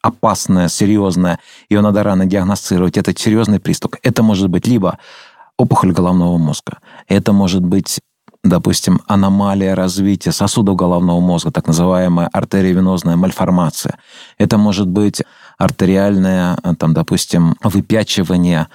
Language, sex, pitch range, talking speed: Russian, male, 90-110 Hz, 115 wpm